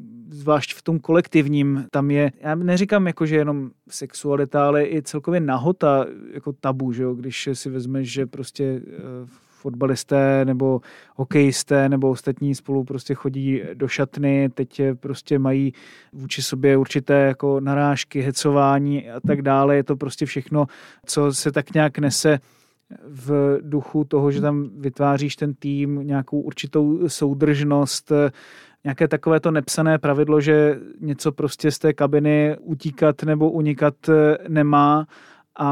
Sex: male